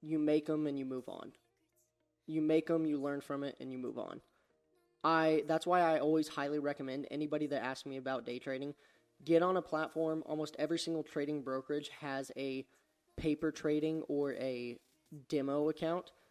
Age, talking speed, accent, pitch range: 20-39, 180 wpm, American, 140-155 Hz